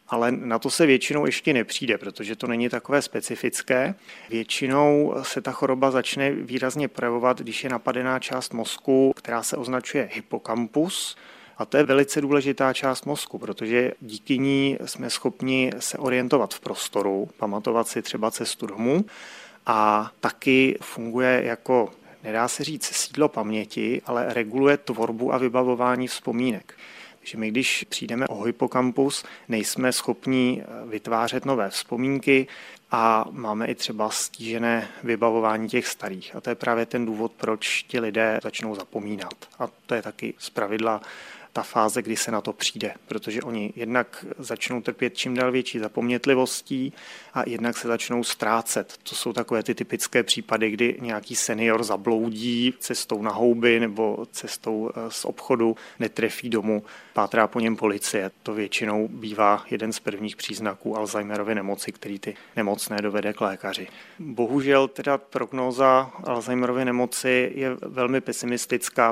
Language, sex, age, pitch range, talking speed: Czech, male, 30-49, 110-130 Hz, 145 wpm